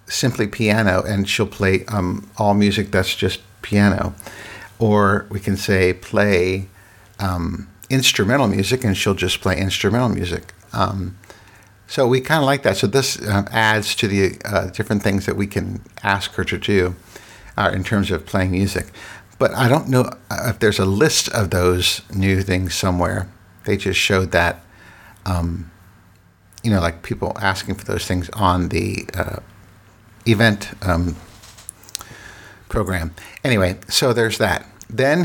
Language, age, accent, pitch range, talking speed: English, 60-79, American, 95-110 Hz, 155 wpm